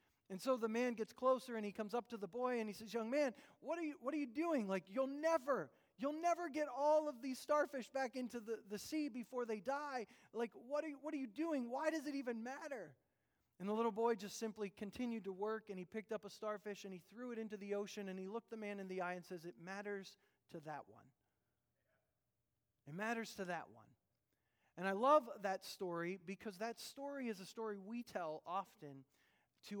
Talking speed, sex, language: 230 wpm, male, English